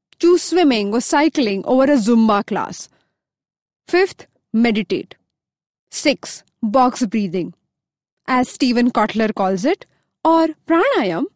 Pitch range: 215-300 Hz